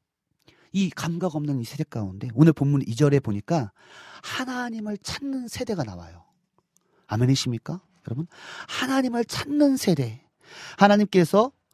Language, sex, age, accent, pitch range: Korean, male, 40-59, native, 135-215 Hz